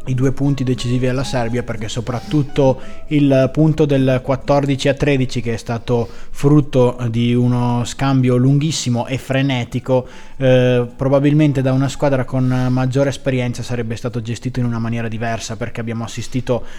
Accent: native